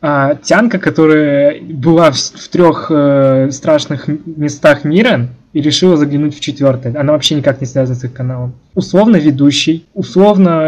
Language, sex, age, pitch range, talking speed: Russian, male, 20-39, 140-170 Hz, 150 wpm